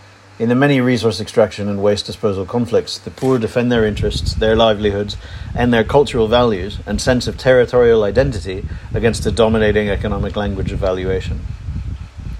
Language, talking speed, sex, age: English, 155 wpm, male, 40-59